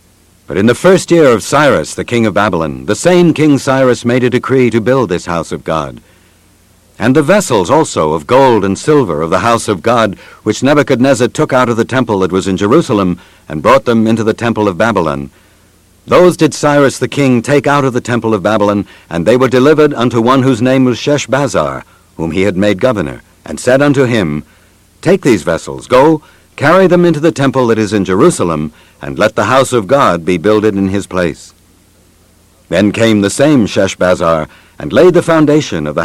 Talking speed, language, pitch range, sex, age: 205 wpm, English, 90-130 Hz, male, 60-79